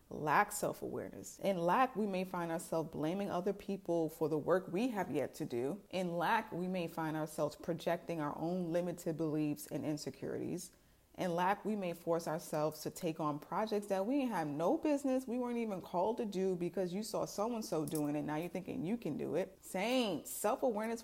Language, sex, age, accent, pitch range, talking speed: English, female, 30-49, American, 165-210 Hz, 195 wpm